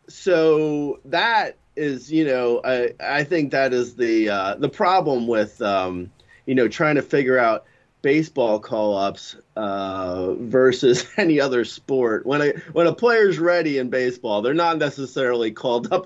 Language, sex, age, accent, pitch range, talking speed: English, male, 30-49, American, 120-170 Hz, 155 wpm